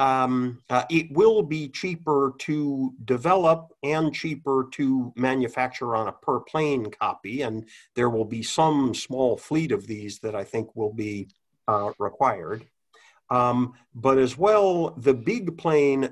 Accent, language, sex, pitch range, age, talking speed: American, English, male, 115-145 Hz, 50-69, 145 wpm